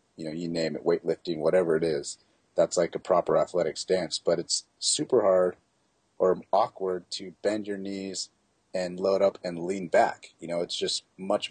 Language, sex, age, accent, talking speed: English, male, 30-49, American, 190 wpm